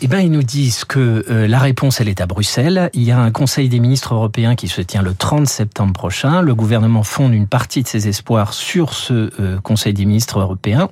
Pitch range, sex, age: 110-145 Hz, male, 40-59